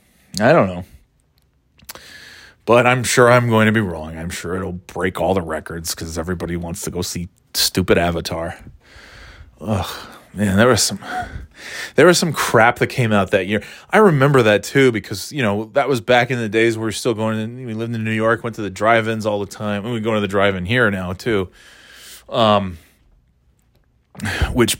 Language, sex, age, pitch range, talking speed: English, male, 20-39, 95-125 Hz, 195 wpm